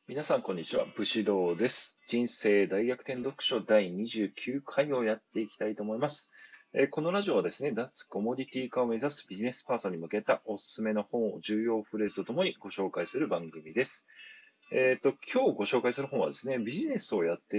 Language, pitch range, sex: Japanese, 110-170 Hz, male